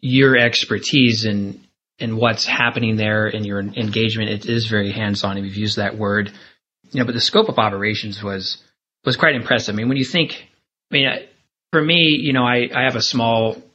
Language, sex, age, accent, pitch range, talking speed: English, male, 30-49, American, 110-130 Hz, 195 wpm